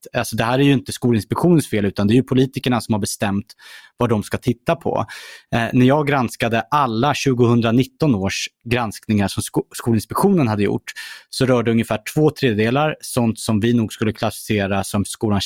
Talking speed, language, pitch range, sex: 170 wpm, Swedish, 105-130 Hz, male